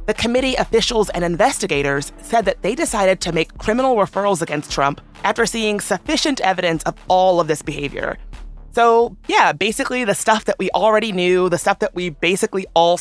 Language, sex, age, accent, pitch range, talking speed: English, female, 30-49, American, 165-225 Hz, 180 wpm